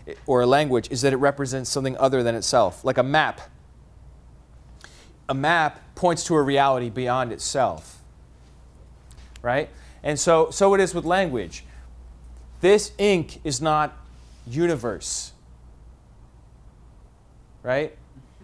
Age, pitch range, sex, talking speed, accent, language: 30-49, 115-150 Hz, male, 115 wpm, American, English